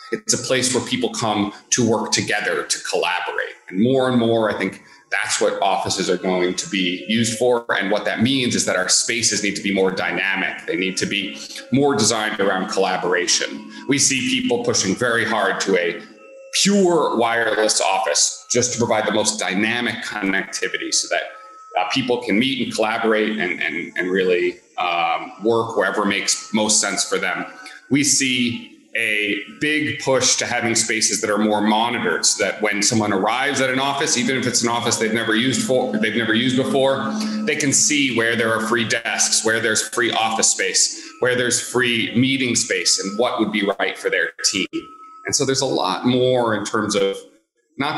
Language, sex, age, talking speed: English, male, 30-49, 190 wpm